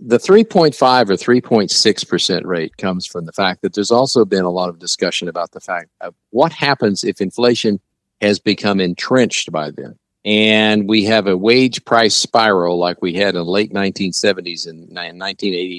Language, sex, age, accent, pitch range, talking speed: English, male, 50-69, American, 95-120 Hz, 175 wpm